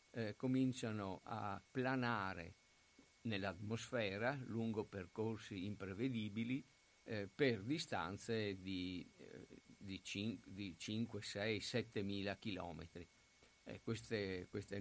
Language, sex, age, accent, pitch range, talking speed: Italian, male, 50-69, native, 95-115 Hz, 90 wpm